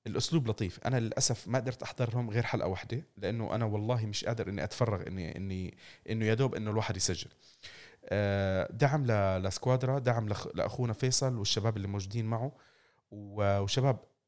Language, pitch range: Arabic, 100-125 Hz